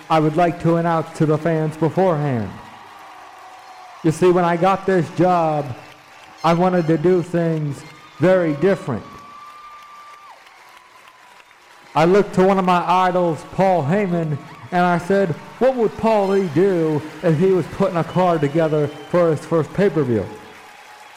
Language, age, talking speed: English, 50-69, 145 wpm